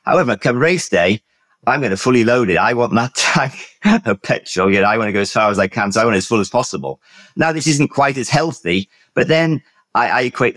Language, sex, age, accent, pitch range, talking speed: English, male, 50-69, British, 95-125 Hz, 255 wpm